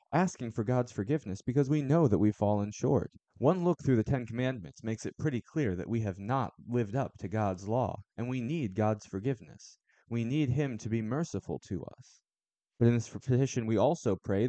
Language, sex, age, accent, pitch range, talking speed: English, male, 20-39, American, 105-140 Hz, 205 wpm